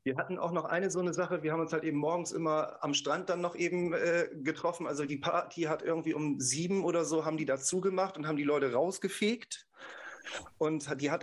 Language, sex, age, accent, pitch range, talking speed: German, male, 40-59, German, 140-165 Hz, 230 wpm